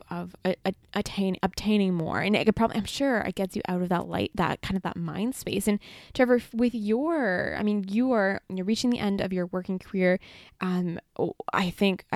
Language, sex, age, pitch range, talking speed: English, female, 10-29, 180-215 Hz, 215 wpm